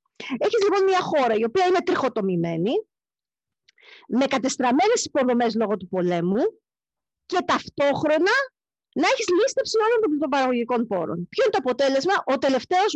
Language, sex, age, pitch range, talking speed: Greek, female, 40-59, 245-355 Hz, 135 wpm